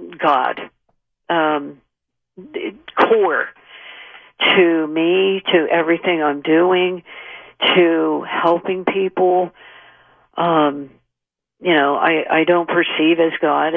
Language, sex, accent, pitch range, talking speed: English, female, American, 155-185 Hz, 90 wpm